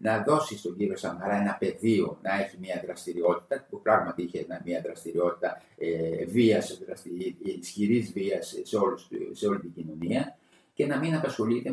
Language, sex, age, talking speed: Greek, male, 50-69, 155 wpm